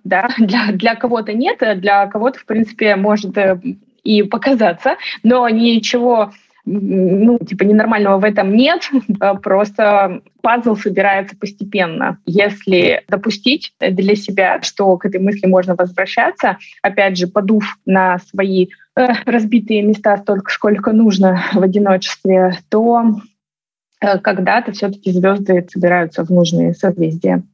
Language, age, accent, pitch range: Russian, 20-39, native, 190-220 Hz